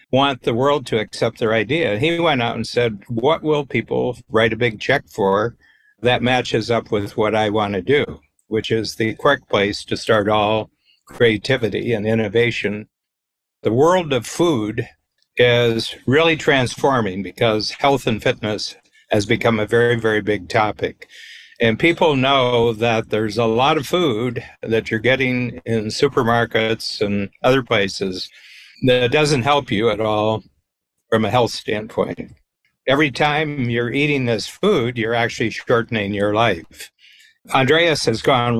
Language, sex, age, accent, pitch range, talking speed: English, male, 60-79, American, 110-135 Hz, 155 wpm